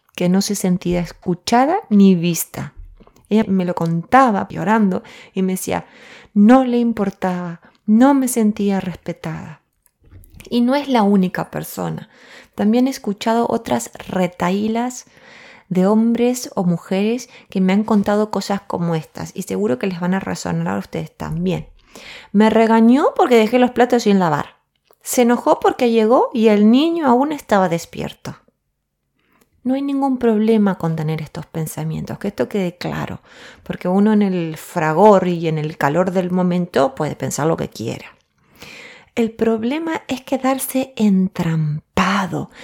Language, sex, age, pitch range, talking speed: Spanish, female, 20-39, 175-235 Hz, 150 wpm